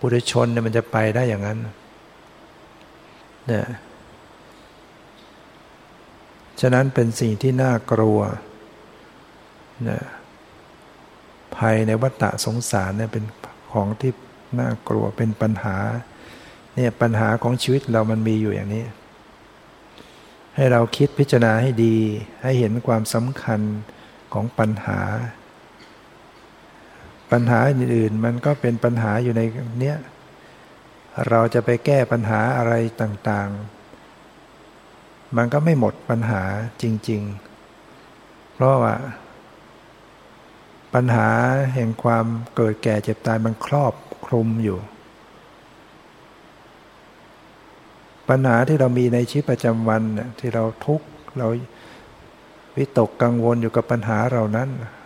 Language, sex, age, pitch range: English, male, 60-79, 110-125 Hz